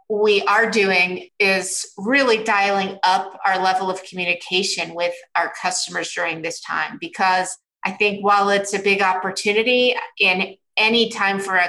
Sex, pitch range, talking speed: female, 190-210 Hz, 155 wpm